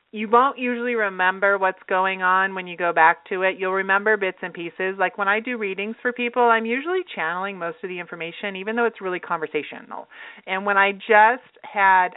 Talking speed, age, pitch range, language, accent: 205 wpm, 40-59, 170-215 Hz, English, American